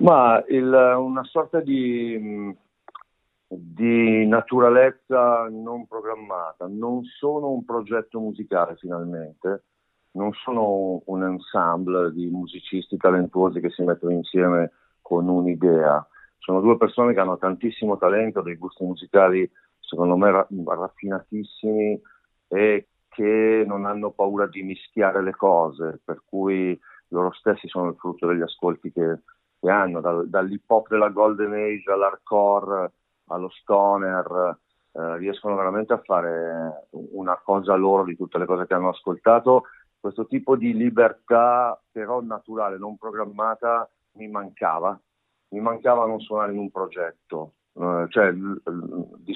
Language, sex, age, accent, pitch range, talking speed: Italian, male, 50-69, native, 90-110 Hz, 130 wpm